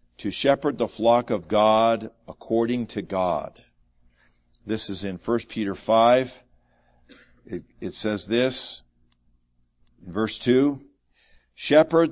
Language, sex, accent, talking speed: English, male, American, 110 wpm